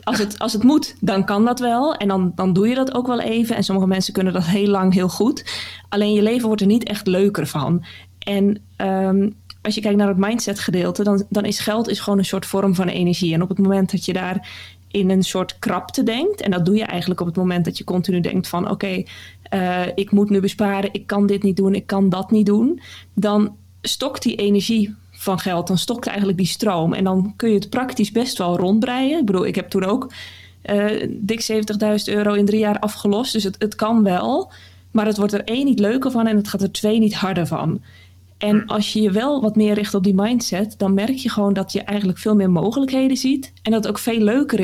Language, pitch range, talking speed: Dutch, 185-215 Hz, 235 wpm